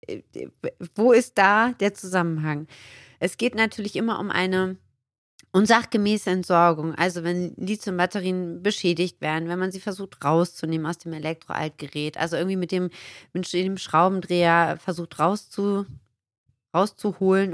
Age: 30-49